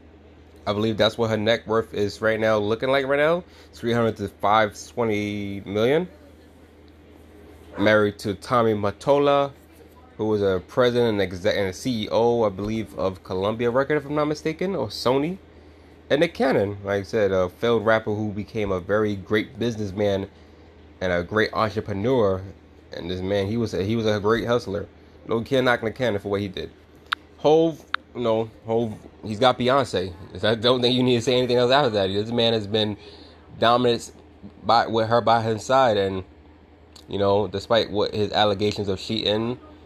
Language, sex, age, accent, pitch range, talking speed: English, male, 20-39, American, 95-115 Hz, 175 wpm